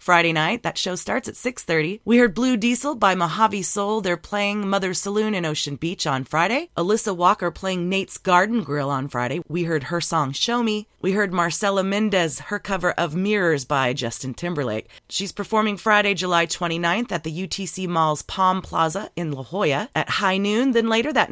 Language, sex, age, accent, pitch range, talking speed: English, female, 30-49, American, 165-210 Hz, 190 wpm